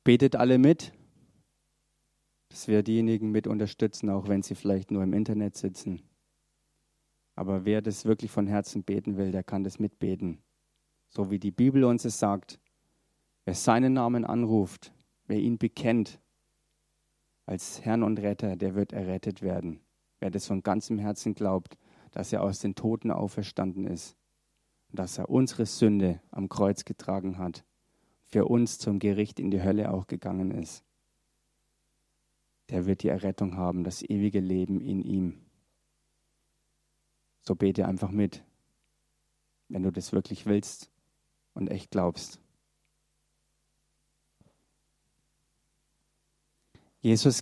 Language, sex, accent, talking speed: German, male, German, 135 wpm